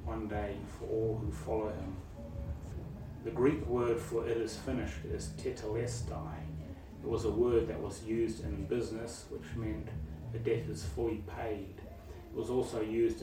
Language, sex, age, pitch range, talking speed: English, male, 30-49, 85-115 Hz, 165 wpm